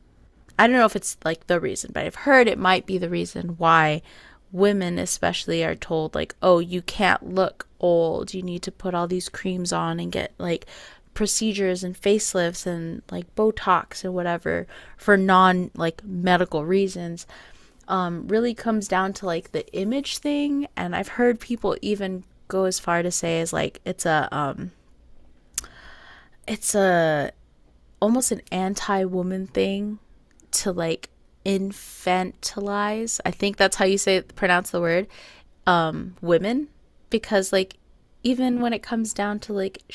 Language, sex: English, female